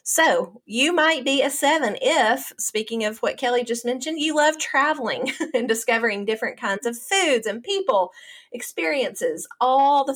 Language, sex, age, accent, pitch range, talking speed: English, female, 30-49, American, 205-275 Hz, 160 wpm